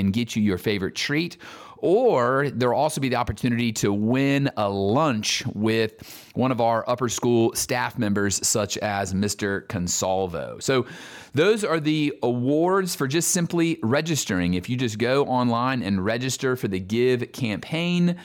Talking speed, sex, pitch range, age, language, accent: 160 wpm, male, 110-140 Hz, 30-49, English, American